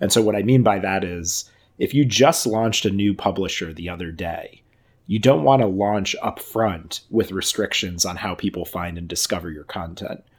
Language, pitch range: English, 95-115 Hz